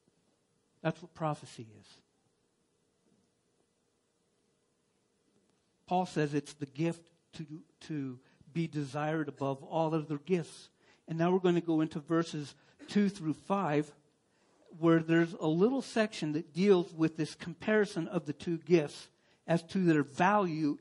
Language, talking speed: English, 135 wpm